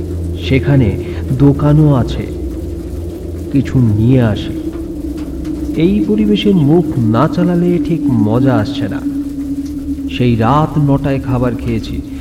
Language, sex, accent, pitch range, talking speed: Bengali, male, native, 95-140 Hz, 100 wpm